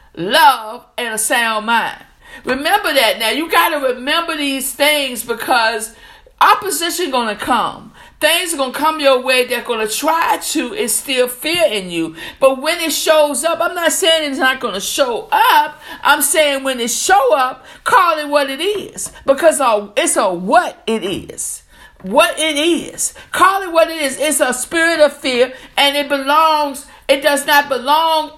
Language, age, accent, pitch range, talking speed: English, 50-69, American, 245-310 Hz, 175 wpm